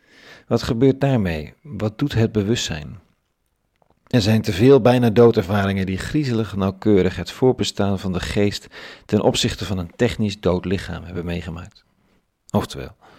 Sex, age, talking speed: male, 40-59, 140 wpm